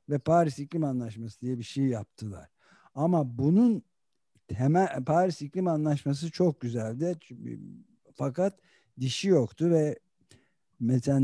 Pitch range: 115-150 Hz